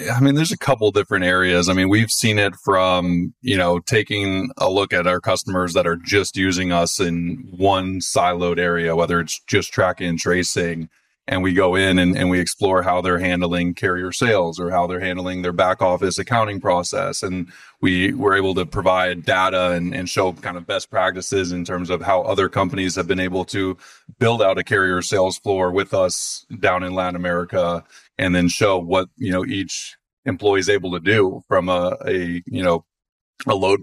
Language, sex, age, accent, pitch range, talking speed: English, male, 30-49, American, 90-105 Hz, 200 wpm